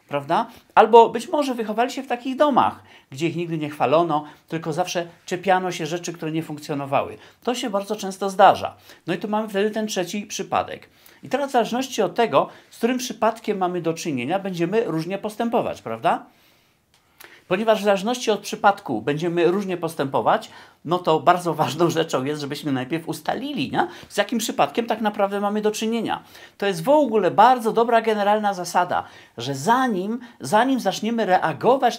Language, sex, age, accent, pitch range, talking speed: Polish, male, 40-59, native, 170-230 Hz, 165 wpm